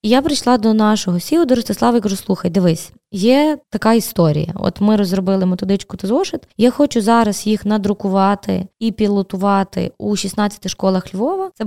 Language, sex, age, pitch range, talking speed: Ukrainian, female, 20-39, 200-240 Hz, 160 wpm